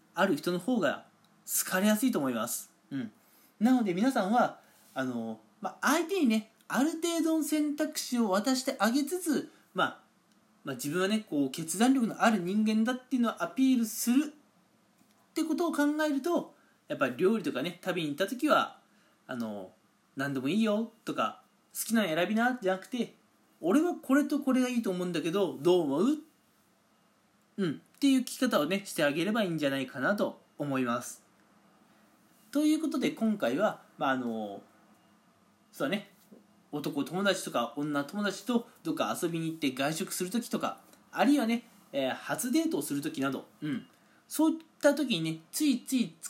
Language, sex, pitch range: Japanese, male, 180-275 Hz